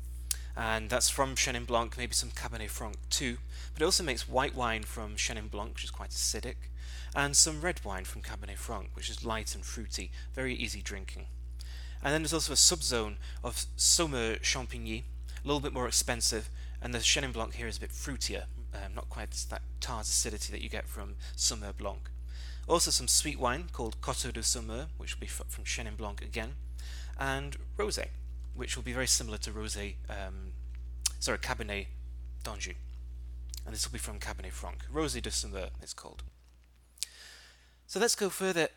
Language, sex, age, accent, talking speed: English, male, 30-49, British, 180 wpm